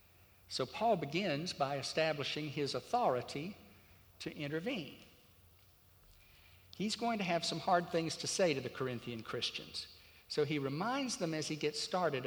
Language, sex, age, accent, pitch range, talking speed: English, male, 60-79, American, 120-170 Hz, 145 wpm